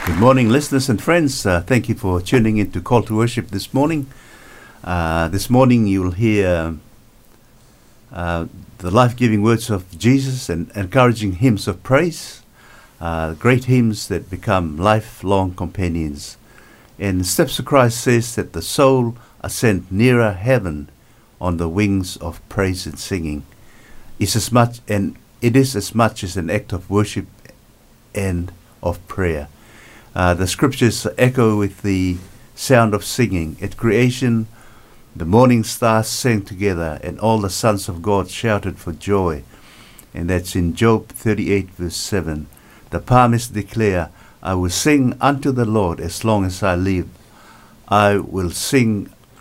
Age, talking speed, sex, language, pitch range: 60-79, 150 wpm, male, English, 90-120 Hz